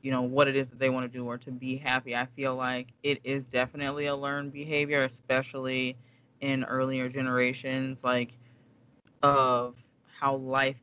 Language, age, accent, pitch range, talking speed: English, 20-39, American, 125-140 Hz, 170 wpm